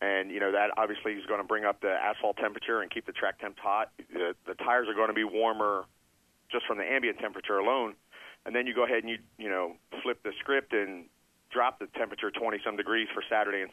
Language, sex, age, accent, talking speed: English, male, 40-59, American, 235 wpm